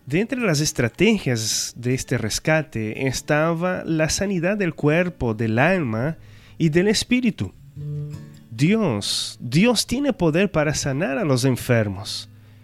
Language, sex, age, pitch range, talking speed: Spanish, male, 30-49, 120-175 Hz, 125 wpm